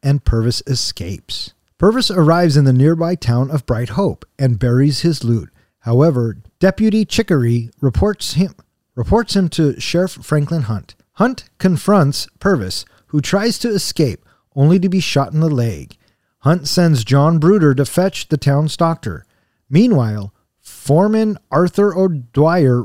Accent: American